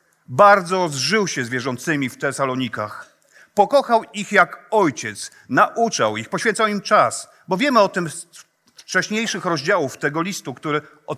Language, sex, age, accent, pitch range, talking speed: Polish, male, 40-59, native, 150-205 Hz, 145 wpm